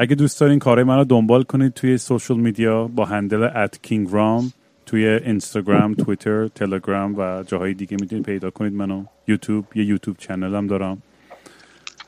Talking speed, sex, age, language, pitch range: 165 wpm, male, 30-49, Persian, 100-125 Hz